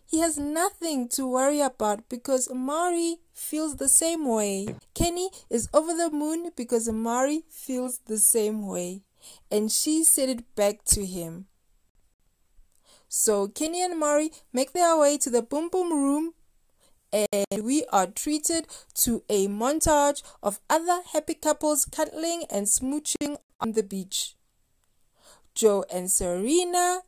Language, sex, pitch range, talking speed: English, female, 220-310 Hz, 135 wpm